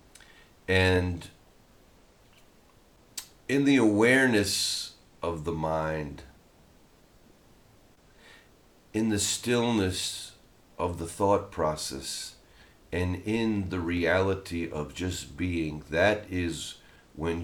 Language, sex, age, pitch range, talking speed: English, male, 50-69, 85-110 Hz, 85 wpm